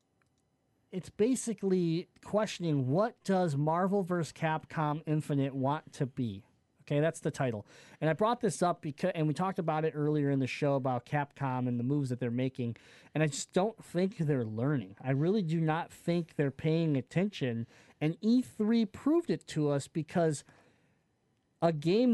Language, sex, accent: English, male, American